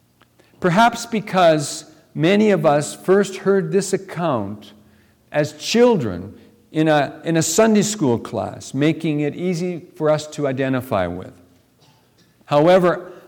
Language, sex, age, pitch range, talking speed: English, male, 60-79, 115-175 Hz, 120 wpm